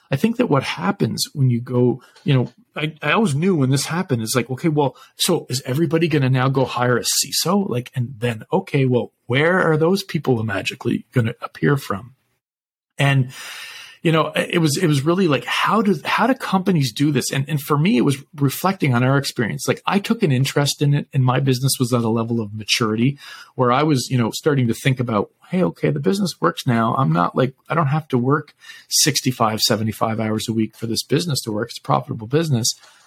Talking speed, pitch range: 225 wpm, 125-170 Hz